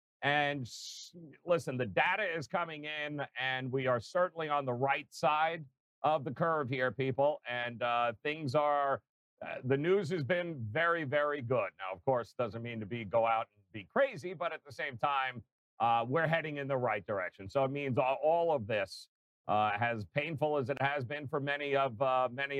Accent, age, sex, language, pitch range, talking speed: American, 50-69, male, English, 125-155 Hz, 195 wpm